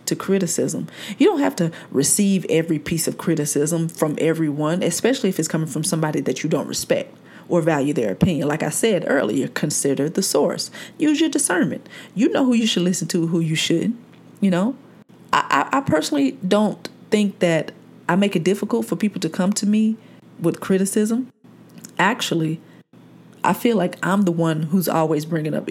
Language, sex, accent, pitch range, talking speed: English, female, American, 160-215 Hz, 185 wpm